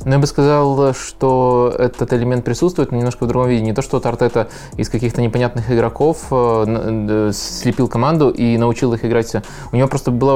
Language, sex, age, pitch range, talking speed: Russian, male, 20-39, 110-130 Hz, 180 wpm